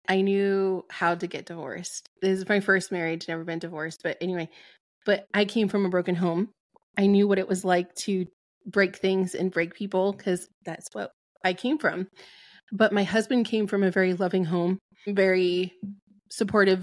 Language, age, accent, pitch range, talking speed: English, 20-39, American, 180-205 Hz, 185 wpm